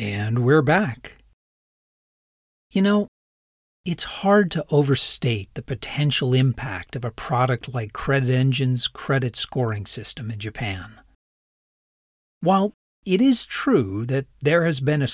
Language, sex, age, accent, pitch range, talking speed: English, male, 40-59, American, 120-175 Hz, 125 wpm